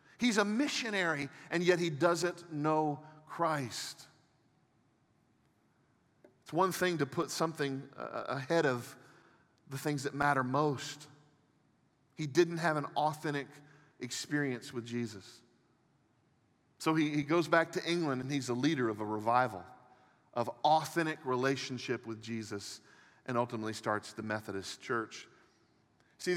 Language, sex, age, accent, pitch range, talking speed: English, male, 40-59, American, 120-160 Hz, 125 wpm